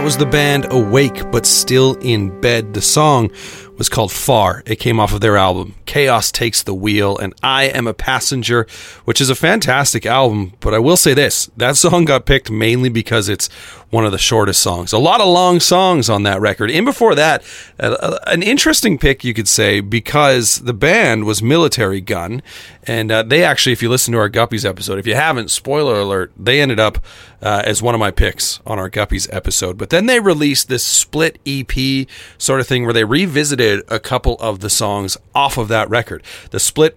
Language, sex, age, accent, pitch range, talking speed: English, male, 30-49, American, 100-130 Hz, 205 wpm